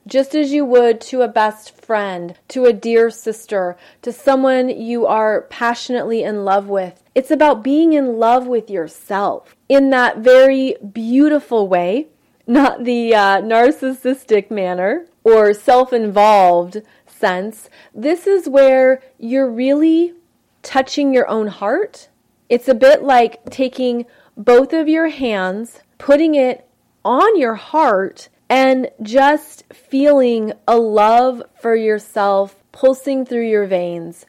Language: English